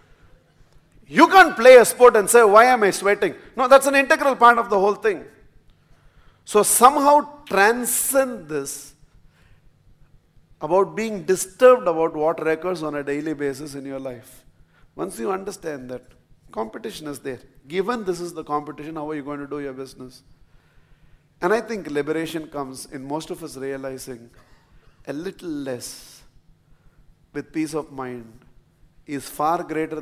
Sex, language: male, English